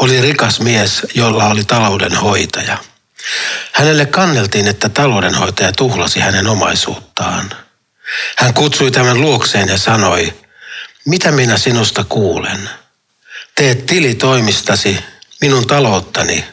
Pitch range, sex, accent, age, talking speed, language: 100-130 Hz, male, native, 60-79, 100 wpm, Finnish